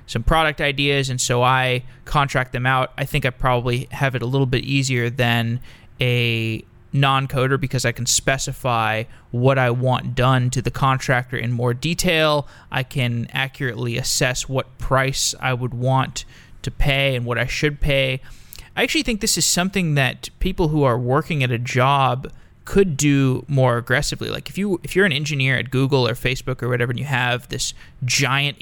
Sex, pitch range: male, 125-150 Hz